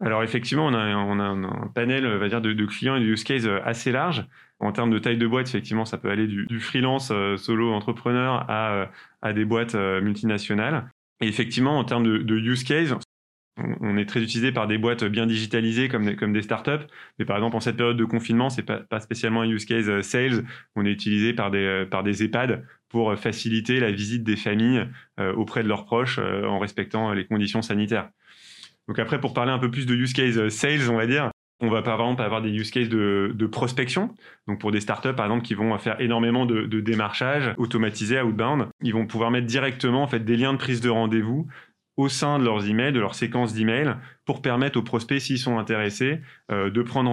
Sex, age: male, 20-39